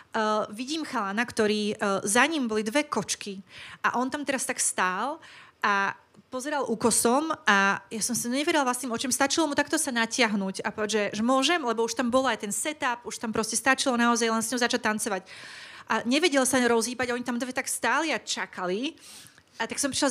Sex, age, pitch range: female, 30-49, 215-285 Hz